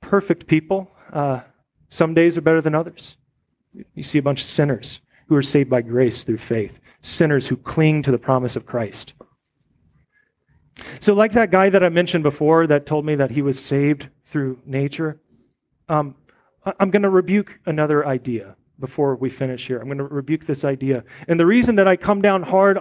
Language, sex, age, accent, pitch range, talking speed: English, male, 30-49, American, 140-195 Hz, 190 wpm